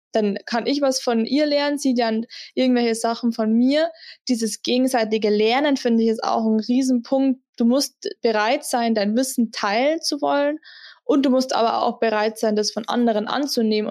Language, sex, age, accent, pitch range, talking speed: German, female, 20-39, German, 225-260 Hz, 180 wpm